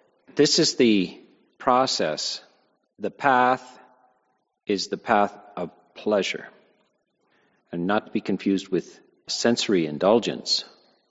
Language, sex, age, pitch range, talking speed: English, male, 40-59, 90-125 Hz, 105 wpm